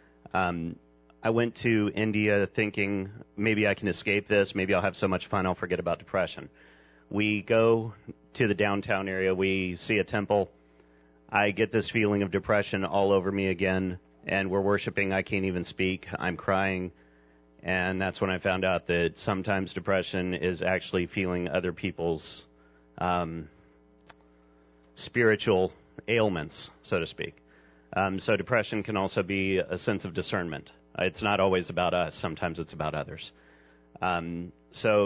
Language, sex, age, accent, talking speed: English, male, 40-59, American, 155 wpm